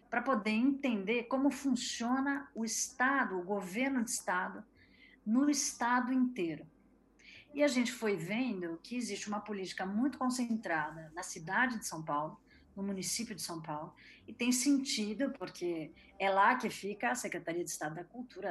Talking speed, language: 160 wpm, Portuguese